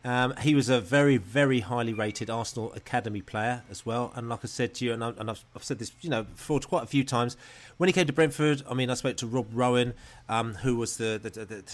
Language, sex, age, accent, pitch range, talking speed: English, male, 30-49, British, 115-135 Hz, 260 wpm